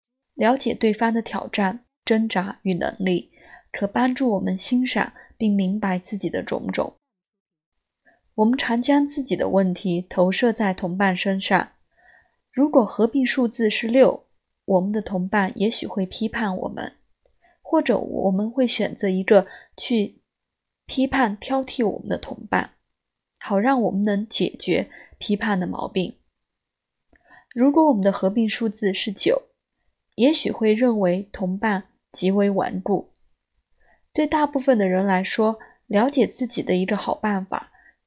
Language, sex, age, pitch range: Chinese, female, 20-39, 195-250 Hz